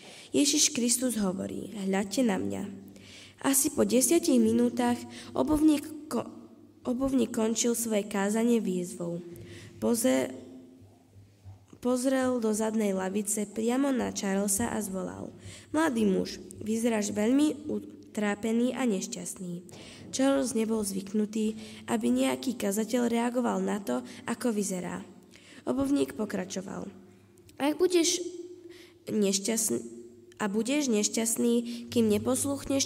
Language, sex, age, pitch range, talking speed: Slovak, female, 20-39, 175-250 Hz, 105 wpm